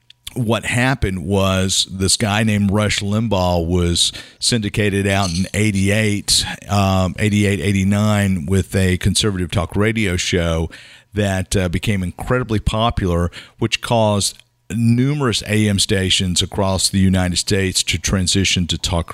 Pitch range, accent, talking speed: 90-105 Hz, American, 120 wpm